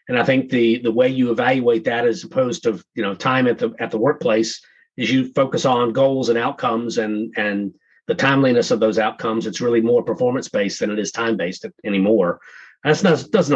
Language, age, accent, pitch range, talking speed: English, 40-59, American, 110-145 Hz, 200 wpm